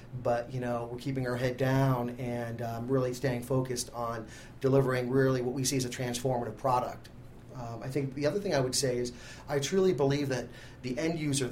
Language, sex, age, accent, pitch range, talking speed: English, male, 30-49, American, 120-135 Hz, 210 wpm